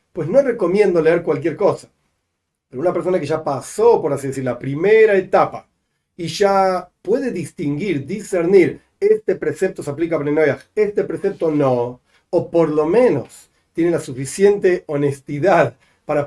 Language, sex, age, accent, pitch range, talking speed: Spanish, male, 40-59, Argentinian, 150-225 Hz, 150 wpm